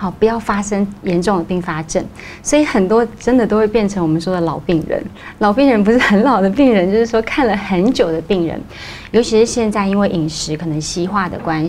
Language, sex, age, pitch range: Chinese, female, 30-49, 170-215 Hz